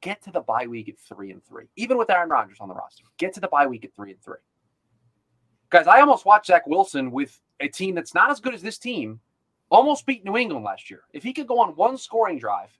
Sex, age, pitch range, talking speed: male, 30-49, 195-275 Hz, 260 wpm